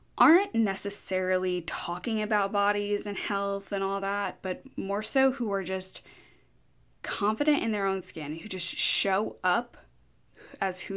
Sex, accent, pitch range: female, American, 165-205 Hz